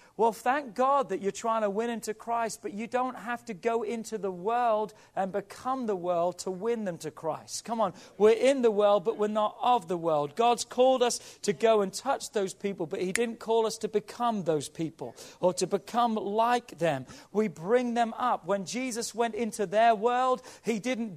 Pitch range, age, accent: 195-245 Hz, 40-59, British